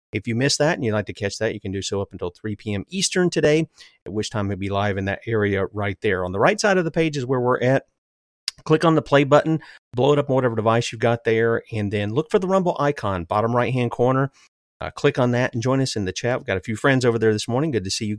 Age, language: 40-59, English